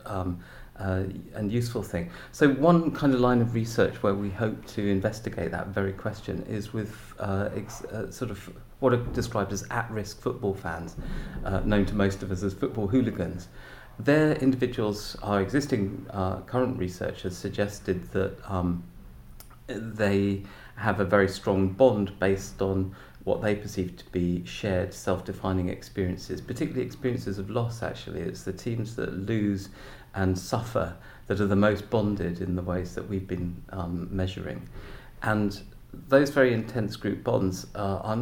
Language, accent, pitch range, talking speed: English, British, 95-115 Hz, 165 wpm